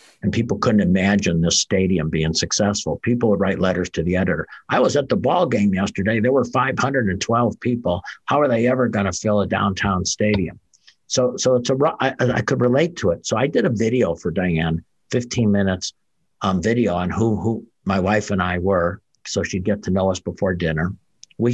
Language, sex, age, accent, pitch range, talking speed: English, male, 60-79, American, 90-110 Hz, 205 wpm